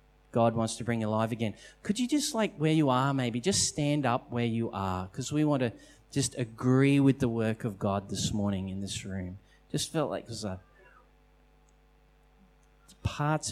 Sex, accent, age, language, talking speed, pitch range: male, Australian, 30-49, English, 190 wpm, 110-140 Hz